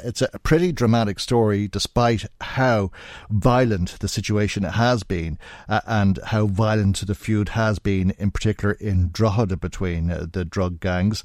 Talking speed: 155 wpm